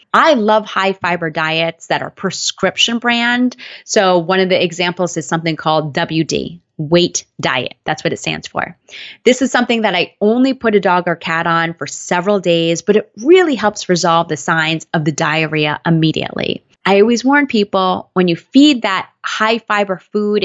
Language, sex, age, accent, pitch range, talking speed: English, female, 20-39, American, 170-210 Hz, 180 wpm